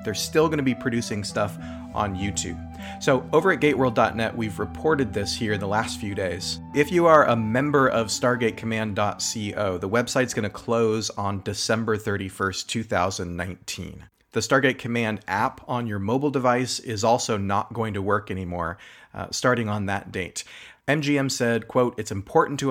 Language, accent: English, American